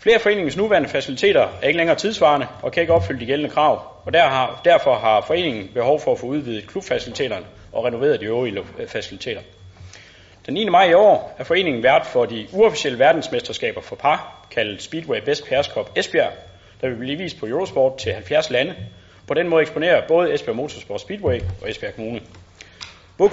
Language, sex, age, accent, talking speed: Danish, male, 30-49, native, 180 wpm